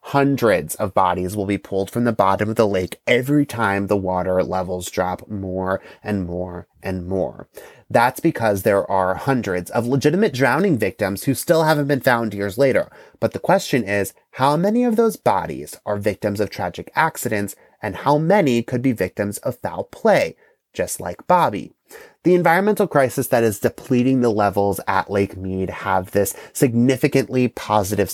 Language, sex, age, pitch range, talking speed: English, male, 30-49, 100-135 Hz, 170 wpm